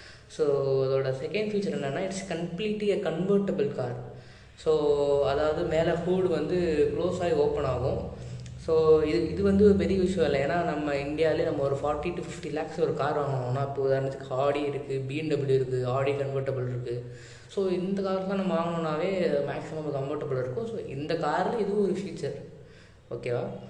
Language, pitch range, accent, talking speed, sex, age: Tamil, 135-185 Hz, native, 155 wpm, female, 20-39